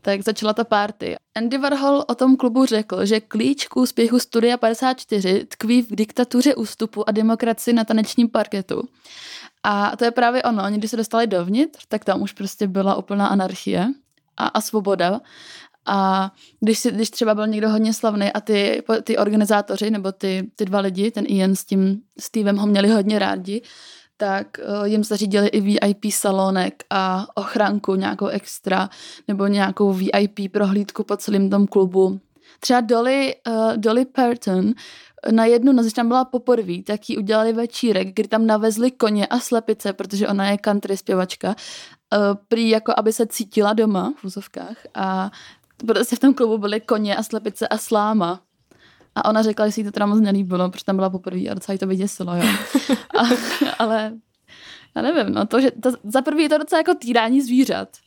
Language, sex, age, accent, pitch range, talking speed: Czech, female, 20-39, native, 200-235 Hz, 175 wpm